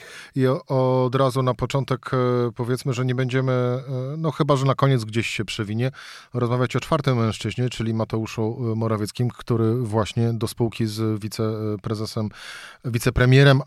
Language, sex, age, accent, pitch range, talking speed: Polish, male, 40-59, native, 110-130 Hz, 135 wpm